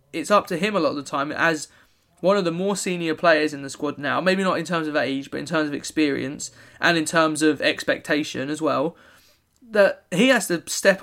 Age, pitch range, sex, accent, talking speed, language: 20-39, 155-195 Hz, male, British, 235 wpm, English